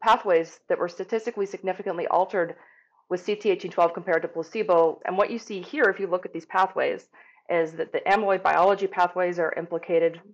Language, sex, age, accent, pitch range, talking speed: English, female, 30-49, American, 160-200 Hz, 175 wpm